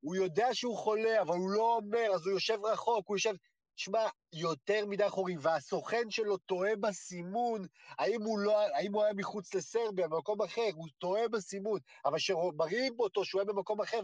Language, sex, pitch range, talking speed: Hebrew, male, 170-220 Hz, 175 wpm